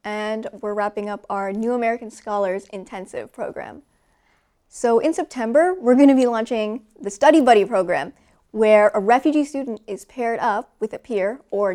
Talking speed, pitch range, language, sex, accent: 170 wpm, 210-260 Hz, English, female, American